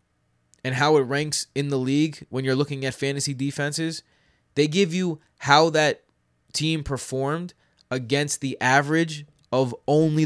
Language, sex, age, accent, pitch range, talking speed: English, male, 20-39, American, 115-145 Hz, 145 wpm